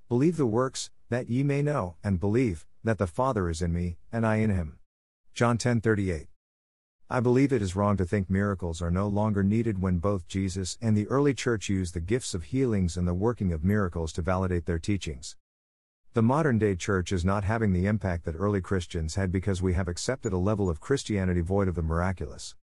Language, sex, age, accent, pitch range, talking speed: English, male, 50-69, American, 90-110 Hz, 210 wpm